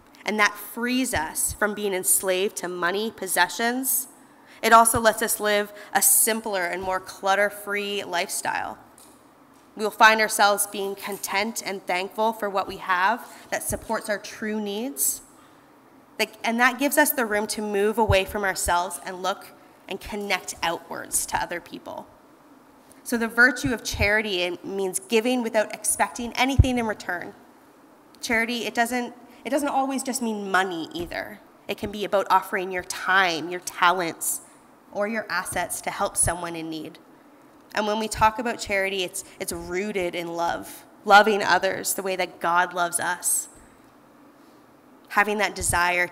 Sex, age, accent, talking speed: female, 20-39, American, 150 wpm